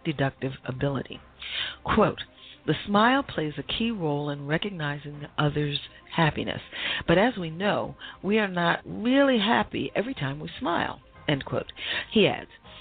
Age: 40-59